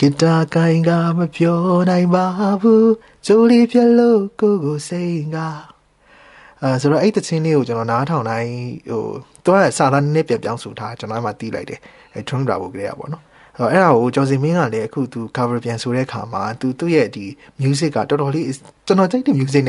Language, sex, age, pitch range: English, male, 20-39, 115-155 Hz